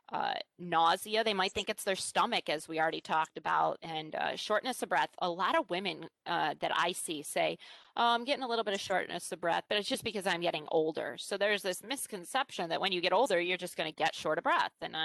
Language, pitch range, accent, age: English, 165-190 Hz, American, 30-49